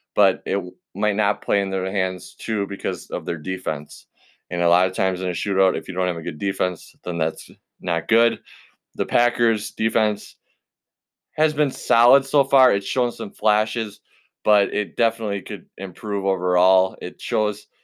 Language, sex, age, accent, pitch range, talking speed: English, male, 20-39, American, 90-110 Hz, 175 wpm